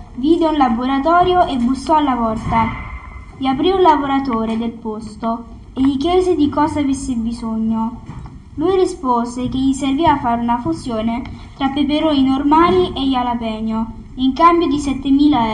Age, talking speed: 10-29, 145 wpm